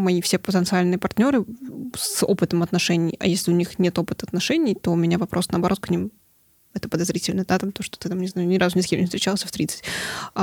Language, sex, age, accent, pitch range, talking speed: Russian, female, 20-39, native, 175-205 Hz, 230 wpm